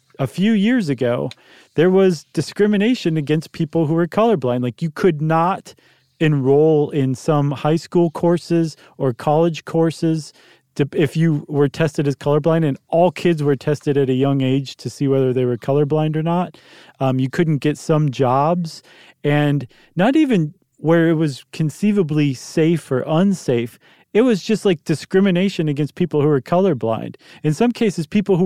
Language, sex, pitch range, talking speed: English, male, 135-170 Hz, 165 wpm